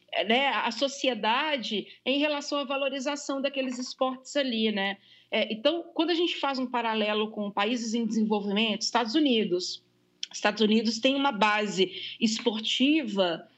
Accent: Brazilian